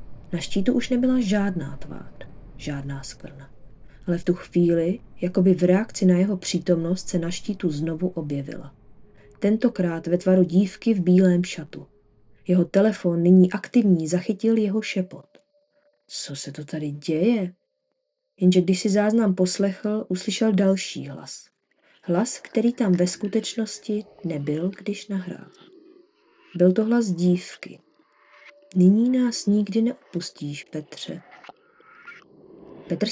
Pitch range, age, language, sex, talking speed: 175-215 Hz, 20-39, Czech, female, 125 wpm